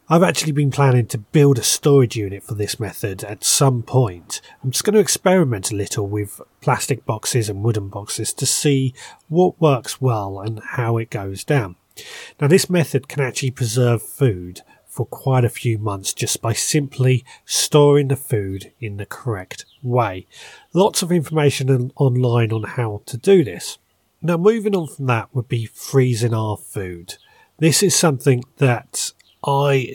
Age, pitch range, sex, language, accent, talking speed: 30-49, 105-140 Hz, male, English, British, 170 wpm